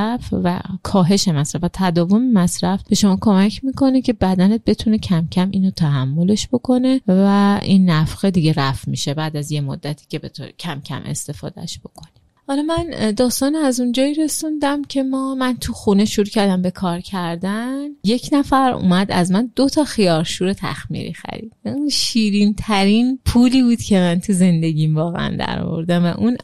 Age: 30-49